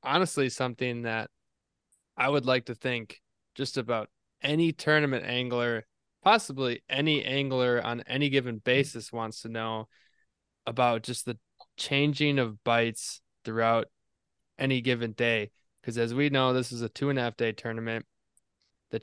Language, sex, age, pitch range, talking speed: English, male, 20-39, 115-135 Hz, 150 wpm